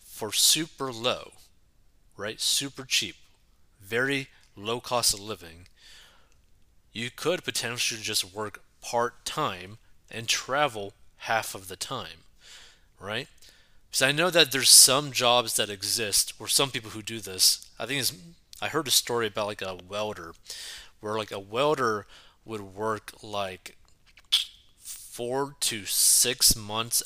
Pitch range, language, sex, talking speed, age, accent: 100-120 Hz, English, male, 135 wpm, 30-49, American